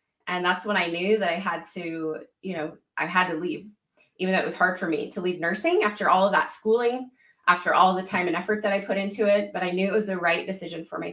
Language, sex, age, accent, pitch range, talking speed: English, female, 20-39, American, 180-215 Hz, 275 wpm